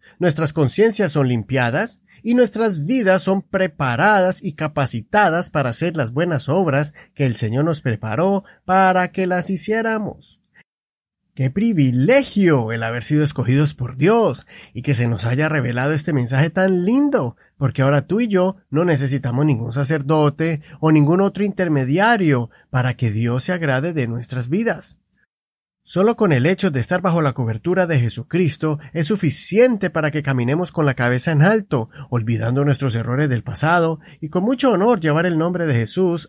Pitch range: 140-190 Hz